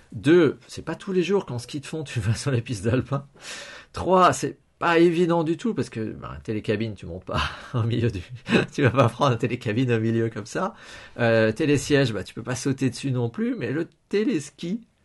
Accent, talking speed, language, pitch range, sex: French, 205 wpm, French, 110-155 Hz, male